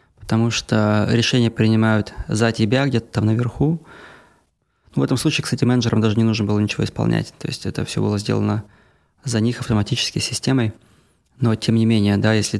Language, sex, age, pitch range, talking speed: Russian, male, 20-39, 105-120 Hz, 170 wpm